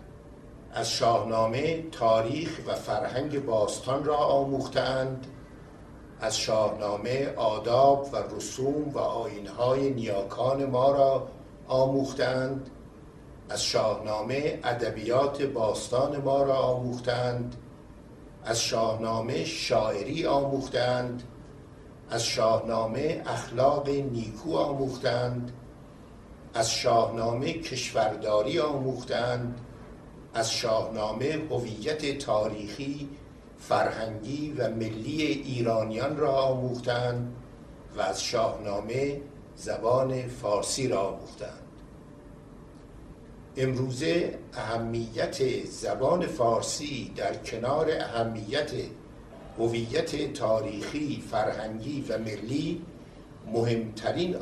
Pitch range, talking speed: 115-140 Hz, 75 wpm